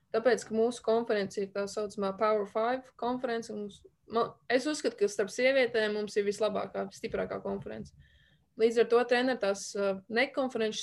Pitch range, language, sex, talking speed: 205-235 Hz, English, female, 145 wpm